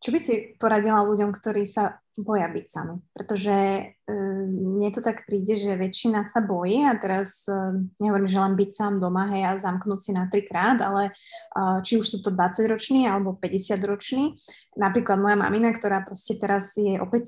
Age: 20-39